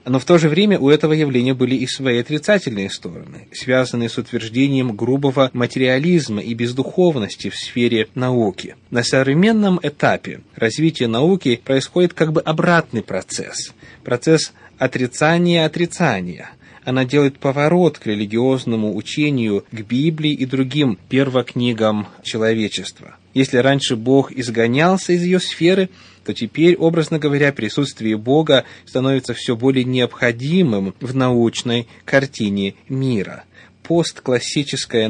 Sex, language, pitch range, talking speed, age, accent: male, Russian, 115-150 Hz, 120 wpm, 20-39, native